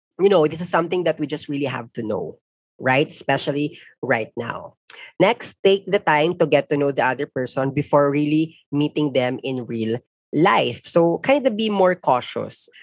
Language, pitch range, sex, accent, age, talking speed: Filipino, 125-170 Hz, female, native, 20-39, 185 wpm